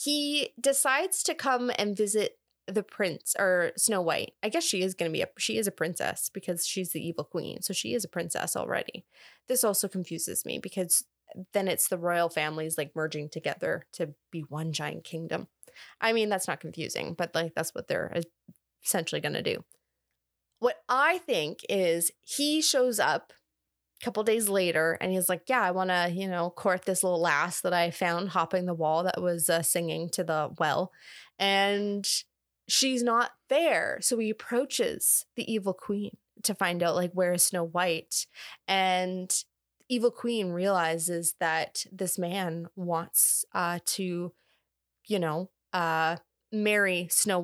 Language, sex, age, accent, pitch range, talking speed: English, female, 20-39, American, 170-220 Hz, 170 wpm